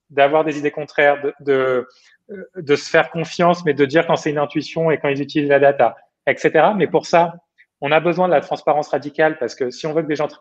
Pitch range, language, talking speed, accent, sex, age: 140-170 Hz, French, 250 wpm, French, male, 30-49